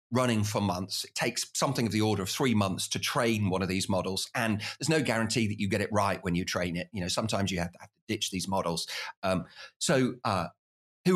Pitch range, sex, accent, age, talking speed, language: 100-135 Hz, male, British, 40-59, 235 wpm, English